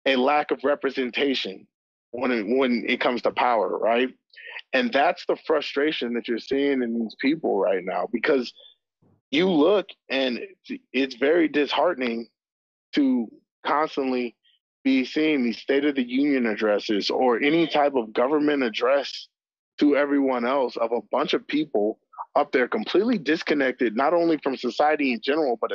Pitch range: 125-155 Hz